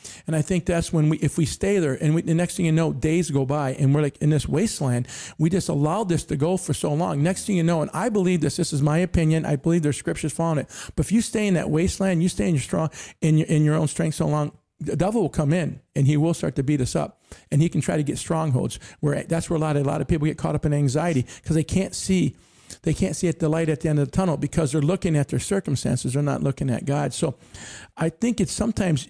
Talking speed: 285 wpm